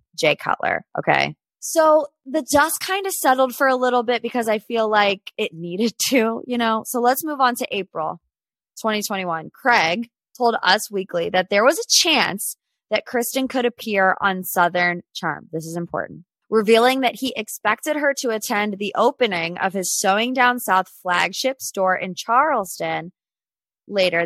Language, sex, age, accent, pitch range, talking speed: English, female, 20-39, American, 190-265 Hz, 165 wpm